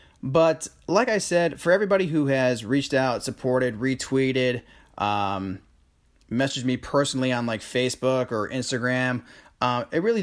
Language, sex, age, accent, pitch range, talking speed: English, male, 30-49, American, 115-140 Hz, 140 wpm